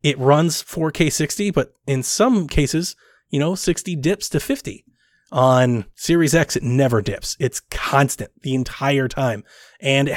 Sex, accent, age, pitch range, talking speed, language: male, American, 20-39, 125-150 Hz, 155 wpm, English